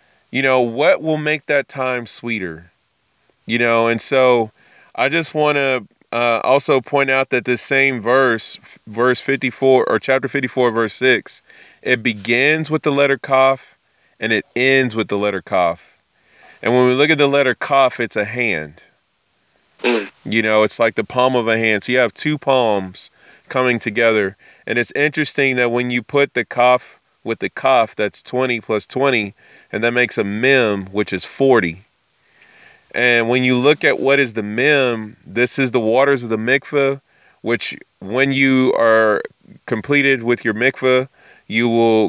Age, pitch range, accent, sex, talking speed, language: 30-49, 110-135 Hz, American, male, 175 wpm, English